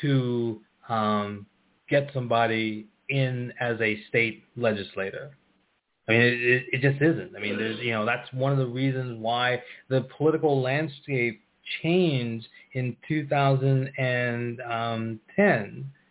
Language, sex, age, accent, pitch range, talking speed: English, male, 20-39, American, 115-140 Hz, 120 wpm